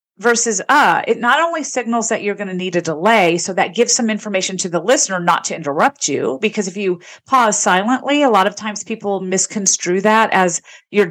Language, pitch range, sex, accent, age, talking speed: English, 180-230 Hz, female, American, 40-59, 210 wpm